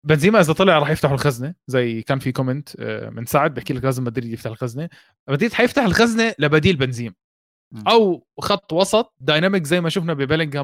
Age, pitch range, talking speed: 20-39, 125-180 Hz, 175 wpm